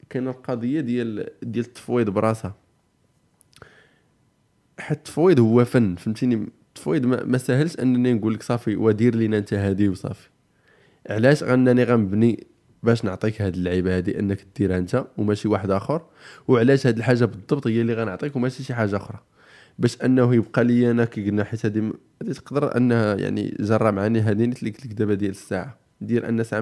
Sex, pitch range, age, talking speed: male, 110-125 Hz, 20-39, 155 wpm